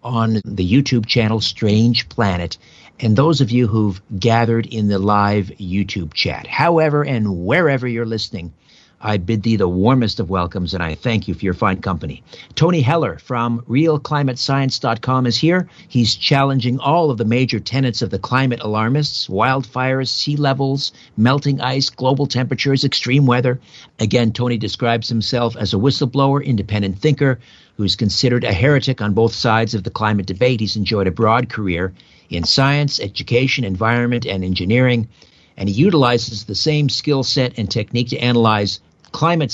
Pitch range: 105-130 Hz